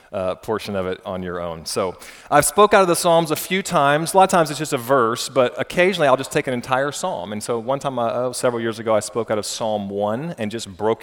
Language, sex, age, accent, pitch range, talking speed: English, male, 30-49, American, 110-140 Hz, 265 wpm